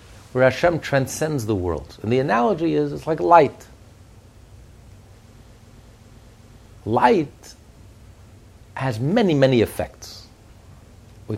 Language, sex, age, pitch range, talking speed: English, male, 60-79, 105-155 Hz, 95 wpm